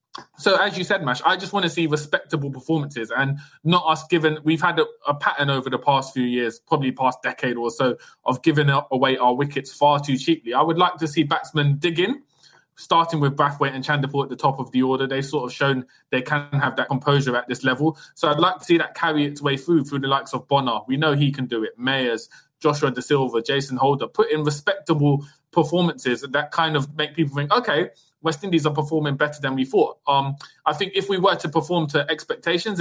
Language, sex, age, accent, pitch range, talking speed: English, male, 20-39, British, 130-160 Hz, 230 wpm